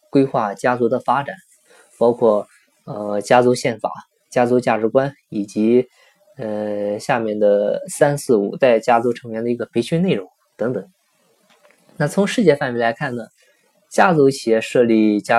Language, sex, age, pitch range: Chinese, male, 20-39, 115-145 Hz